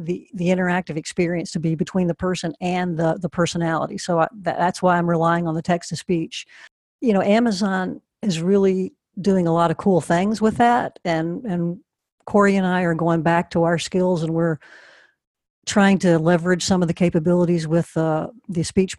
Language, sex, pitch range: English, female, 165-190 Hz